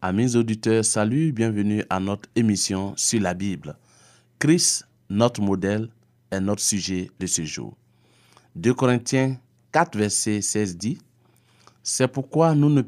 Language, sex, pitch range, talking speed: French, male, 105-130 Hz, 140 wpm